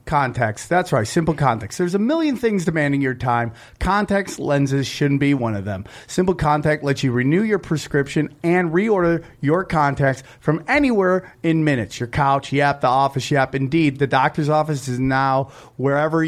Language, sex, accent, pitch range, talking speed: English, male, American, 130-160 Hz, 175 wpm